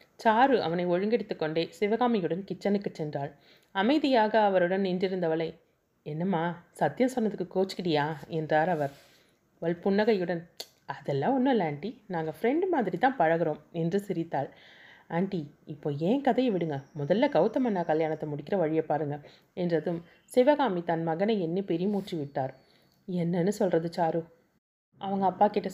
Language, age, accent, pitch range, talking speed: Tamil, 30-49, native, 160-205 Hz, 120 wpm